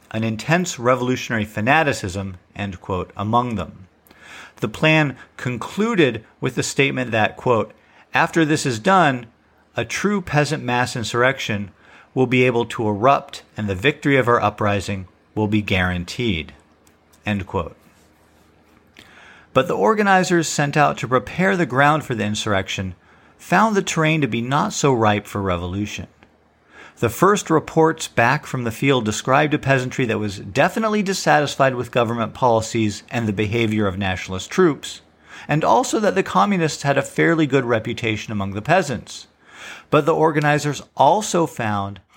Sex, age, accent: male, 50-69, American